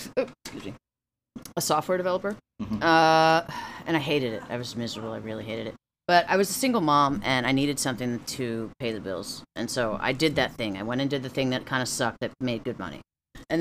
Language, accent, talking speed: English, American, 225 wpm